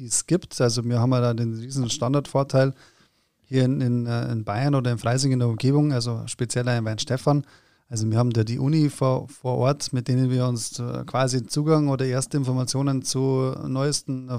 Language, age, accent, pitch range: German, 20-39, German, 120-140 Hz